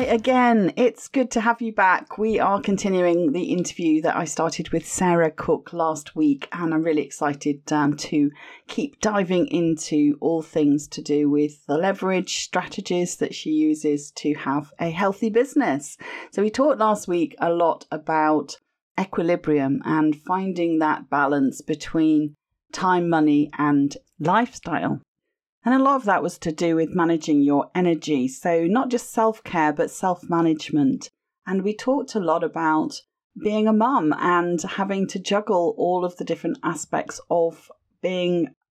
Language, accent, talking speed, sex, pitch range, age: English, British, 160 wpm, female, 155-215 Hz, 40-59